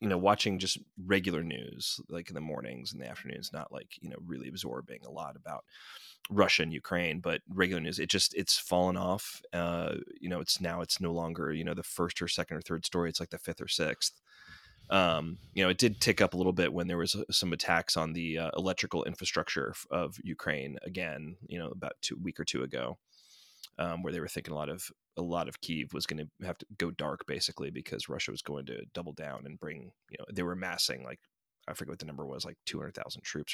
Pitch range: 85-95 Hz